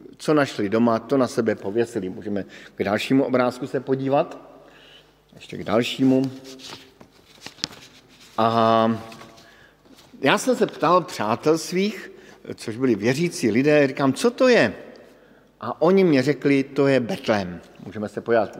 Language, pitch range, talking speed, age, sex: Slovak, 115-140 Hz, 135 wpm, 50-69, male